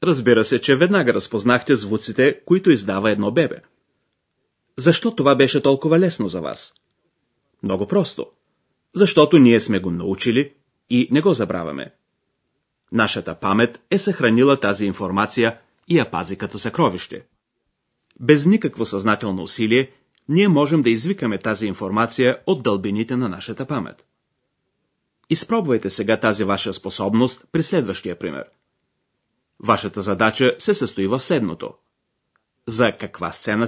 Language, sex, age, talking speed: Bulgarian, male, 30-49, 130 wpm